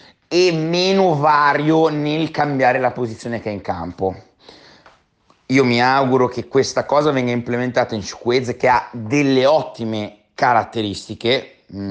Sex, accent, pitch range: male, native, 115-140 Hz